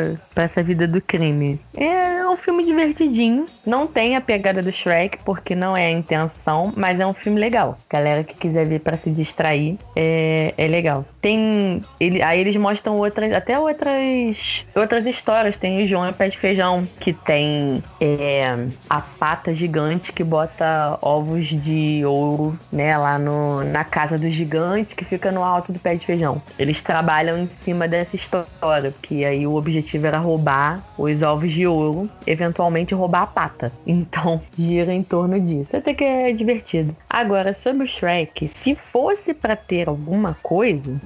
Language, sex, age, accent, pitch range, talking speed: Portuguese, female, 20-39, Brazilian, 155-210 Hz, 170 wpm